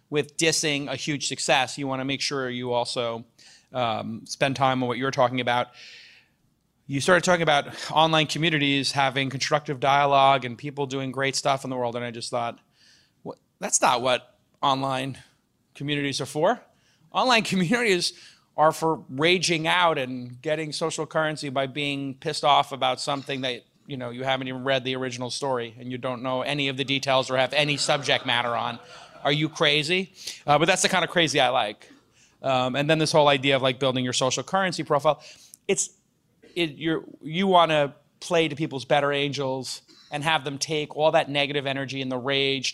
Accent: American